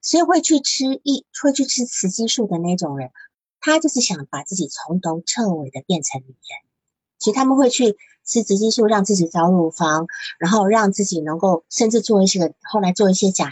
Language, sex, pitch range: Chinese, female, 170-245 Hz